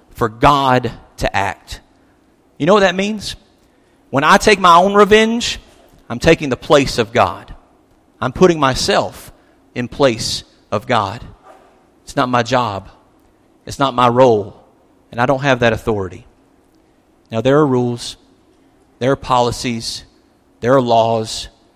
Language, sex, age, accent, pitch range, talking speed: English, male, 40-59, American, 115-140 Hz, 145 wpm